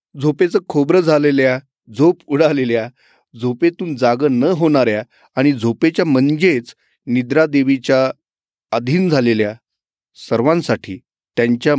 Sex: male